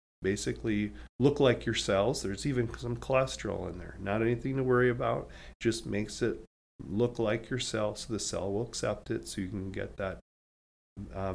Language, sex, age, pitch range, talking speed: English, male, 30-49, 95-115 Hz, 185 wpm